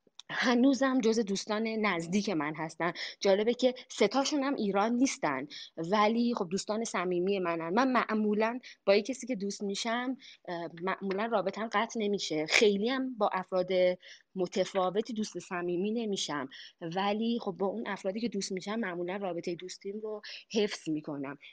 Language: Persian